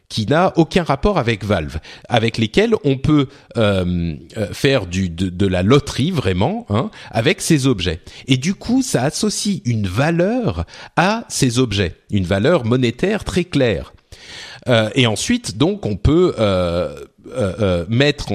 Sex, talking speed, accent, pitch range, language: male, 150 wpm, French, 100-155 Hz, French